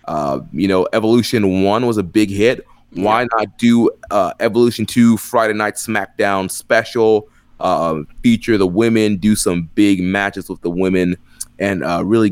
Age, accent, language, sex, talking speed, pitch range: 20-39, American, English, male, 160 wpm, 95-110 Hz